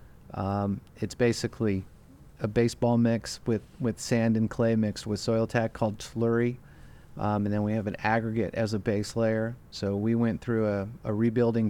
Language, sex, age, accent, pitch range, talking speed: English, male, 30-49, American, 110-120 Hz, 180 wpm